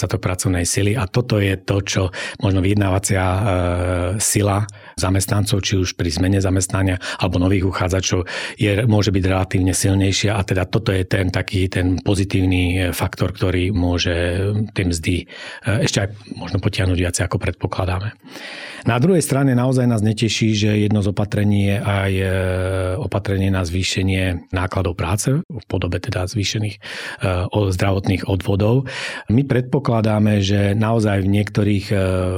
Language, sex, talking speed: Slovak, male, 140 wpm